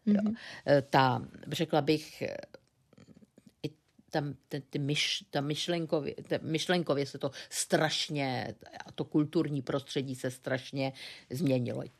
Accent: native